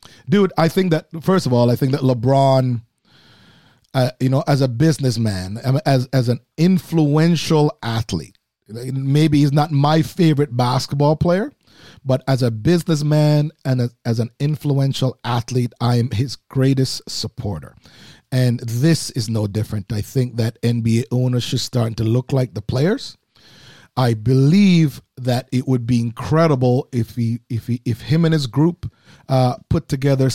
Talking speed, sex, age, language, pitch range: 160 wpm, male, 40-59, English, 120-150 Hz